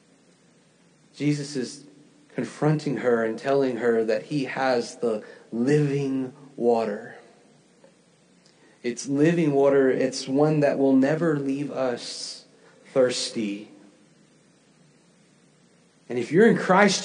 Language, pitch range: English, 145-215 Hz